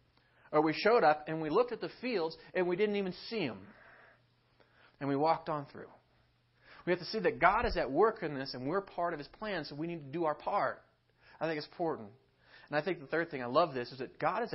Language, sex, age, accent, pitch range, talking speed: English, male, 30-49, American, 155-215 Hz, 255 wpm